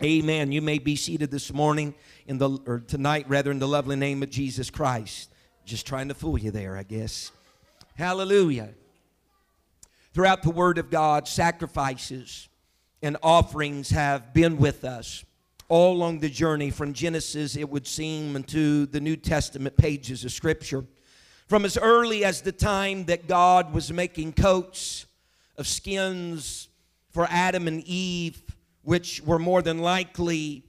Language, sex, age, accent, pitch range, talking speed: English, male, 50-69, American, 145-185 Hz, 155 wpm